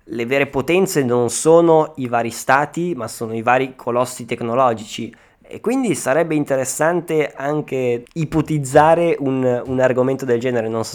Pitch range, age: 115-140 Hz, 20-39